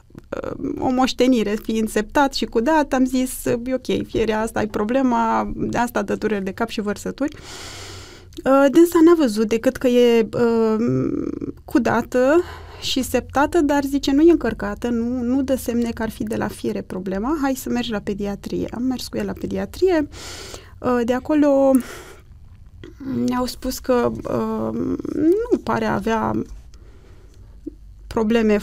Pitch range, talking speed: 225-300 Hz, 135 wpm